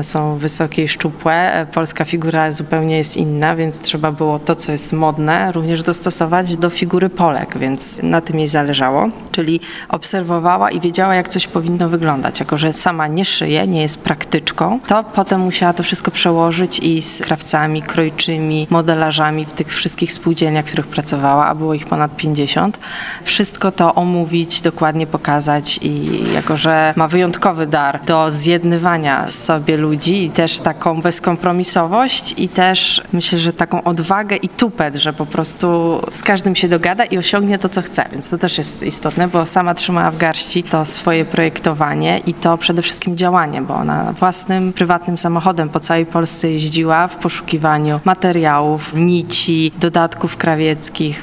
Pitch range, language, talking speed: 155-180 Hz, Polish, 160 wpm